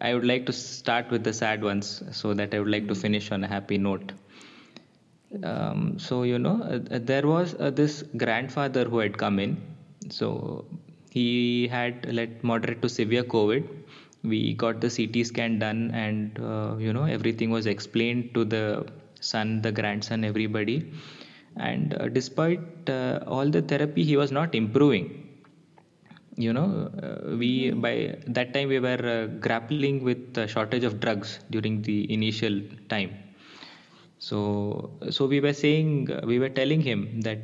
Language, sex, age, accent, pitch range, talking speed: English, male, 20-39, Indian, 110-135 Hz, 165 wpm